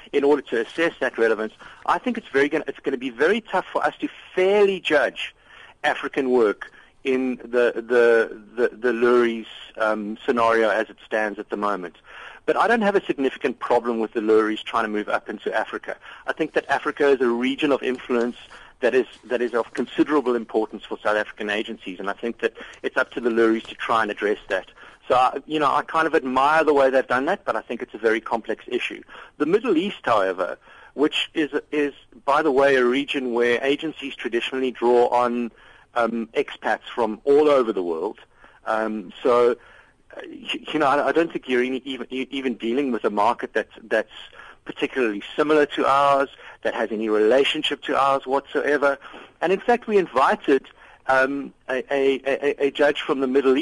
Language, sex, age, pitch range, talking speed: English, male, 50-69, 115-150 Hz, 195 wpm